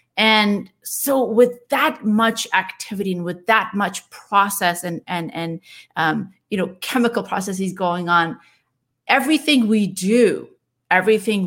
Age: 30-49